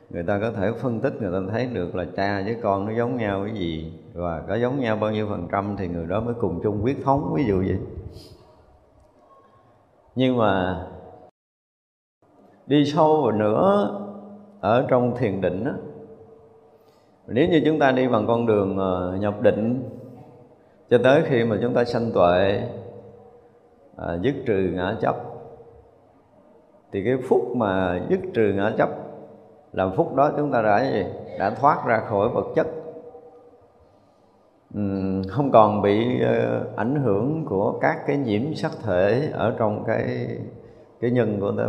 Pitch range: 95-135 Hz